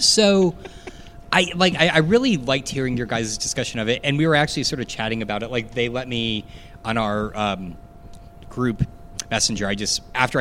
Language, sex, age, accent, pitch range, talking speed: English, male, 30-49, American, 100-140 Hz, 195 wpm